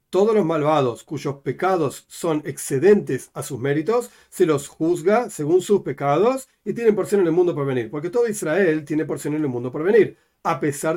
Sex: male